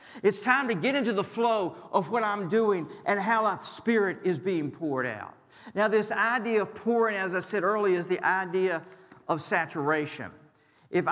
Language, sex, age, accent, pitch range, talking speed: English, male, 50-69, American, 140-190 Hz, 185 wpm